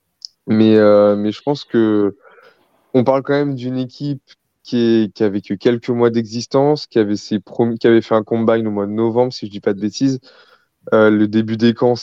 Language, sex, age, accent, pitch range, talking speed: French, male, 20-39, French, 105-125 Hz, 210 wpm